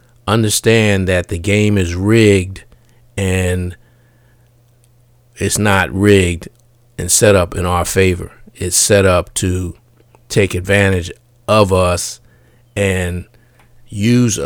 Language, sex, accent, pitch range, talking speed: English, male, American, 95-120 Hz, 110 wpm